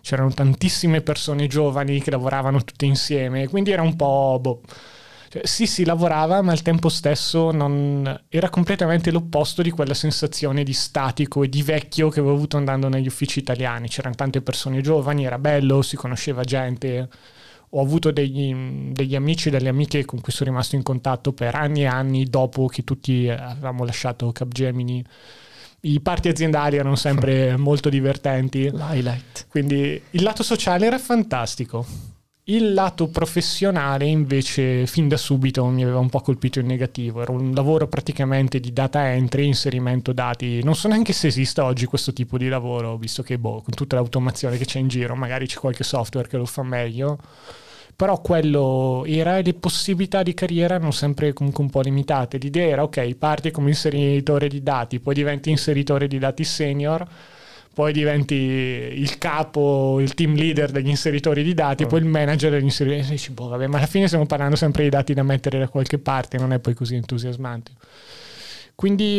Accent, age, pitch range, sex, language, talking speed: native, 20-39, 130-155 Hz, male, Italian, 175 wpm